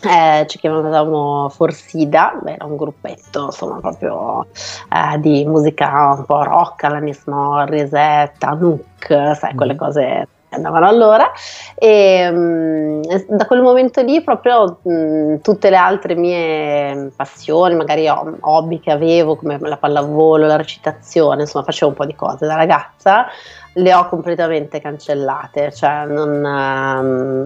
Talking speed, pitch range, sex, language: 140 wpm, 145-175 Hz, female, Italian